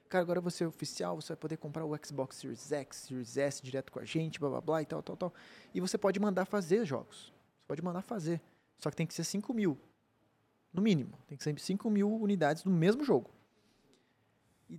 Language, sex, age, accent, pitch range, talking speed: Portuguese, male, 20-39, Brazilian, 145-195 Hz, 220 wpm